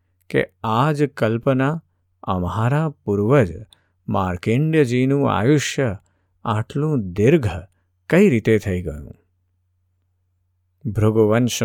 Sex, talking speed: male, 70 wpm